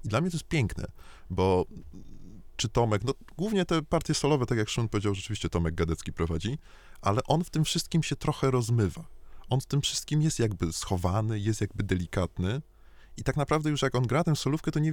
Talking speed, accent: 205 wpm, native